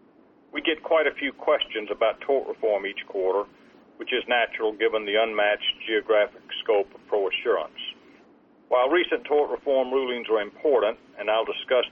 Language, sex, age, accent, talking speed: English, male, 50-69, American, 155 wpm